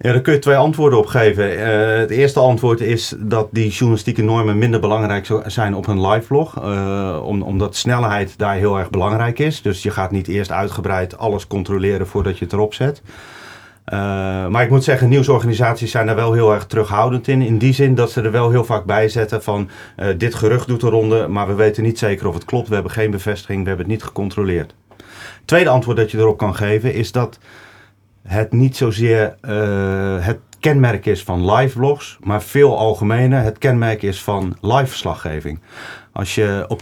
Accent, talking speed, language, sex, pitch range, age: Dutch, 200 wpm, Dutch, male, 100-120 Hz, 40-59